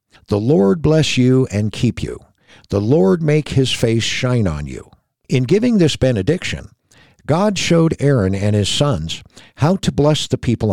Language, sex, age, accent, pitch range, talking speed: English, male, 60-79, American, 100-140 Hz, 170 wpm